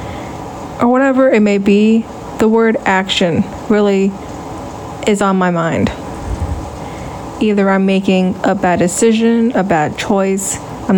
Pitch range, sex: 195-230 Hz, female